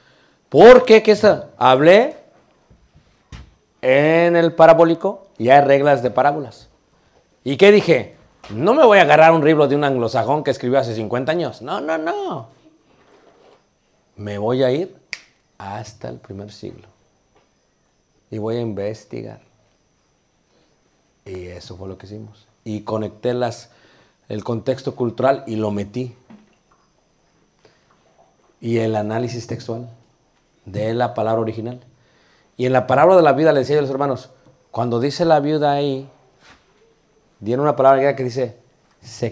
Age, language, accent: 50-69, Spanish, Mexican